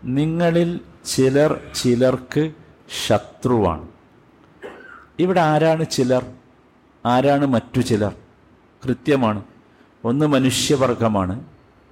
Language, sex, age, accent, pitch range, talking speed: Malayalam, male, 50-69, native, 115-140 Hz, 65 wpm